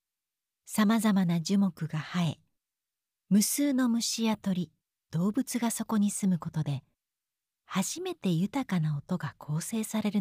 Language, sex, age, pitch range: Japanese, female, 40-59, 155-225 Hz